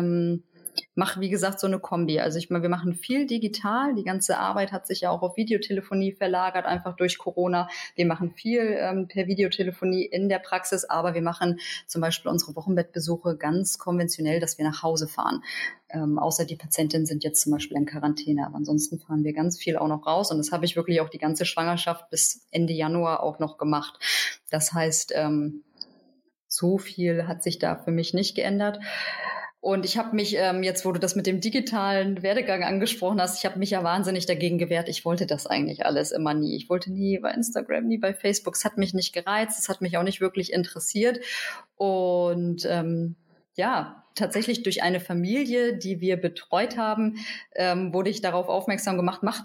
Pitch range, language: 170-210 Hz, German